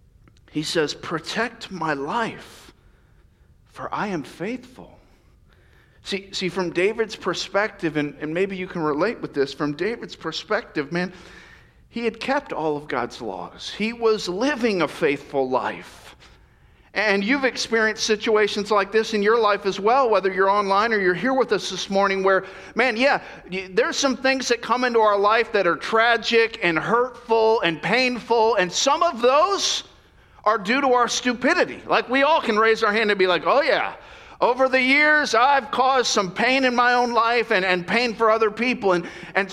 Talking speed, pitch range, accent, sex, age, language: 180 wpm, 180-245 Hz, American, male, 50-69, English